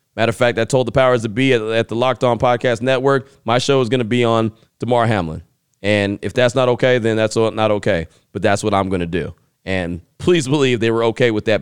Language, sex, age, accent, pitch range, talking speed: English, male, 30-49, American, 110-130 Hz, 250 wpm